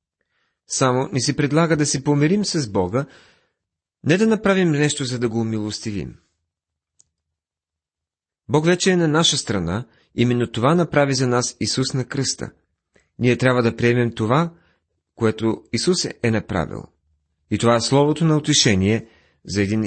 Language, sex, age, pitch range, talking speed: Bulgarian, male, 40-59, 90-145 Hz, 145 wpm